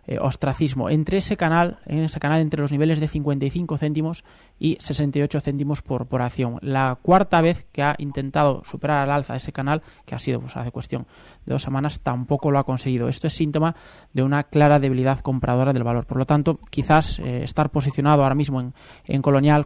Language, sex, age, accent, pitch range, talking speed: Spanish, male, 20-39, Spanish, 130-155 Hz, 200 wpm